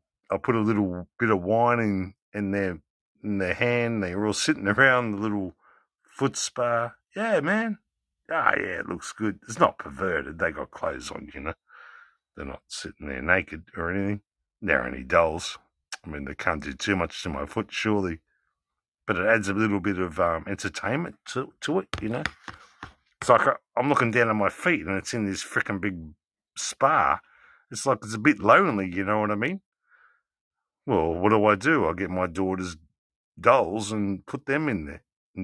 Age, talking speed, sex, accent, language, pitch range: 50-69, 200 wpm, male, Australian, English, 95-115 Hz